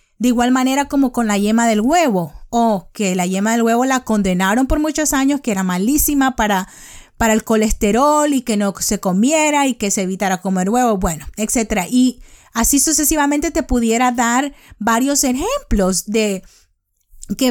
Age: 30-49